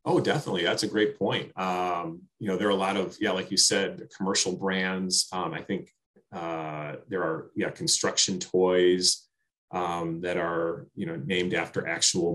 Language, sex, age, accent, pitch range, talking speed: English, male, 30-49, American, 90-100 Hz, 180 wpm